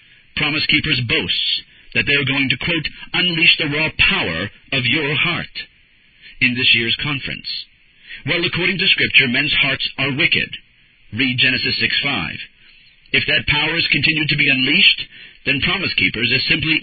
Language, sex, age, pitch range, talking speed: English, male, 50-69, 130-155 Hz, 155 wpm